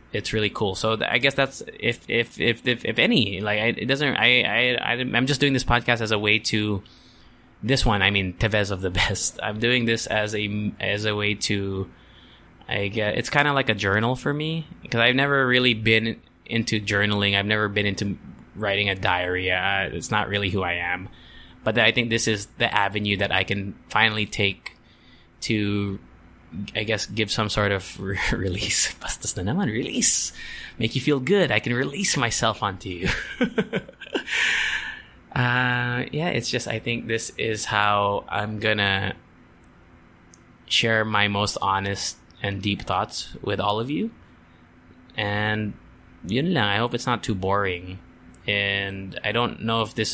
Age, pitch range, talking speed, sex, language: 20-39, 100-115 Hz, 170 wpm, male, English